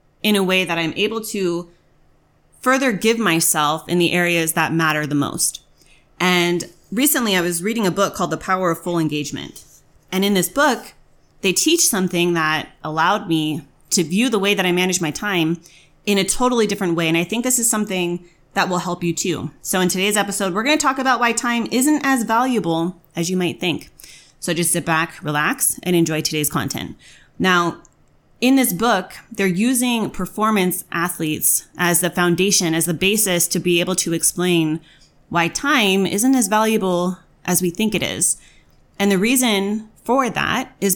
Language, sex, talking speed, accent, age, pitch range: English, female, 185 wpm, American, 30-49, 165-205 Hz